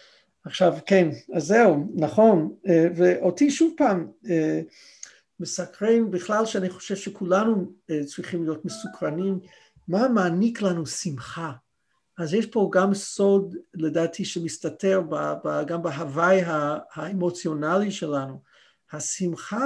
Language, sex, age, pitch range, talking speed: Hebrew, male, 50-69, 160-205 Hz, 115 wpm